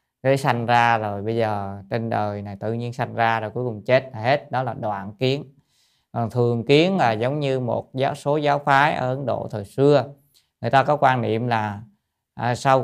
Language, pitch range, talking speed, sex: Vietnamese, 110-135 Hz, 220 wpm, male